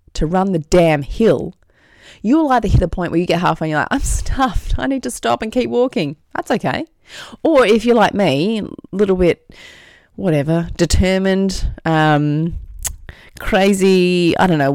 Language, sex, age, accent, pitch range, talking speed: English, female, 30-49, Australian, 145-185 Hz, 170 wpm